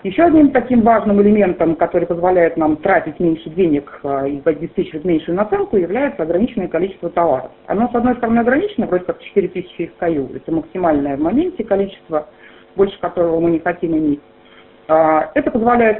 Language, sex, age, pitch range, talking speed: Russian, female, 40-59, 165-225 Hz, 160 wpm